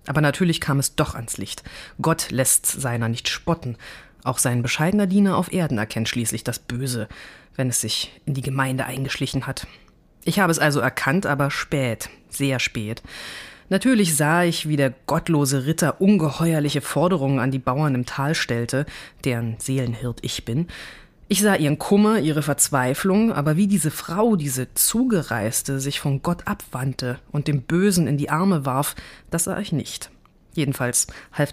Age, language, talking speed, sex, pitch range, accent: 20-39, German, 165 wpm, female, 130-175 Hz, German